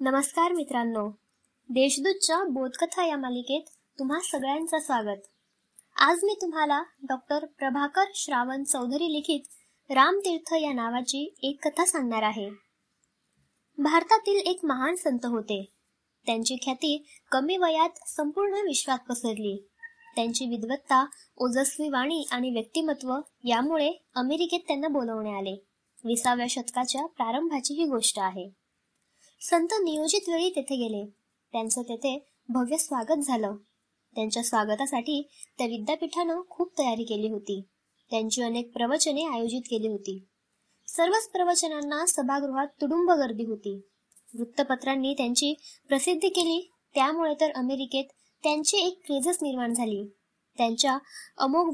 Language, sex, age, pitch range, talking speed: Marathi, male, 20-39, 240-315 Hz, 90 wpm